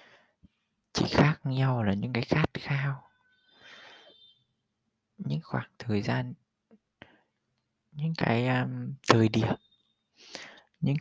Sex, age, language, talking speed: male, 20-39, Vietnamese, 100 wpm